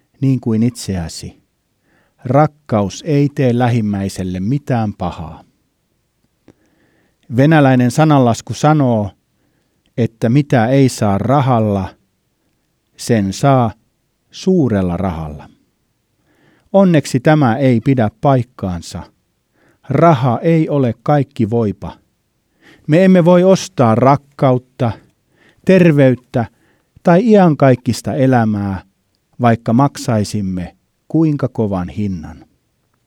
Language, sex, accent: Finnish, male, native